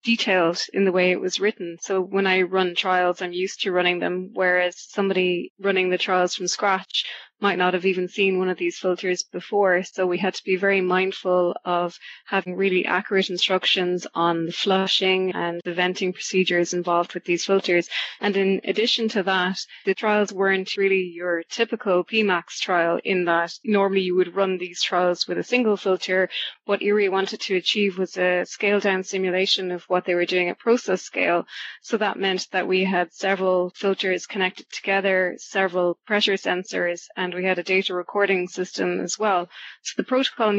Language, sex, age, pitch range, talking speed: English, female, 20-39, 180-195 Hz, 185 wpm